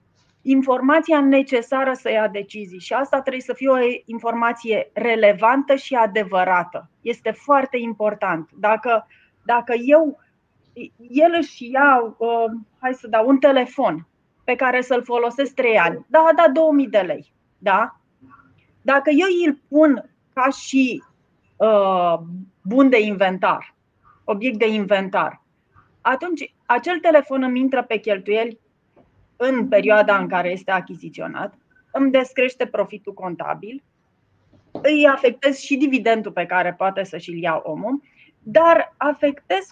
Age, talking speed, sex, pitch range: 30-49, 130 wpm, female, 210-275 Hz